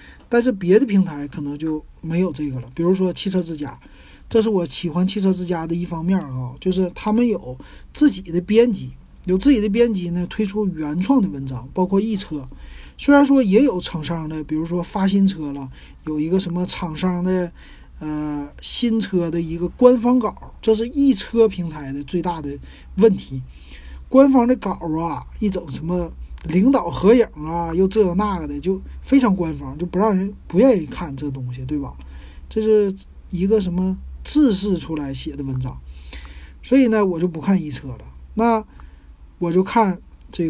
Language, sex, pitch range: Chinese, male, 145-205 Hz